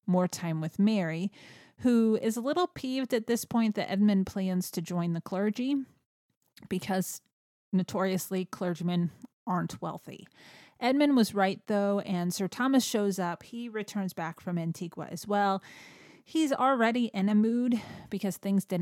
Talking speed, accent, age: 155 wpm, American, 30-49